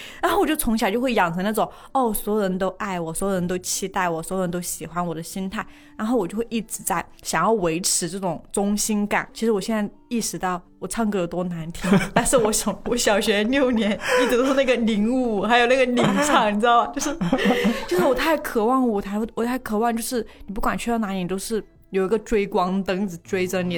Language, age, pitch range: Chinese, 20-39, 185-235 Hz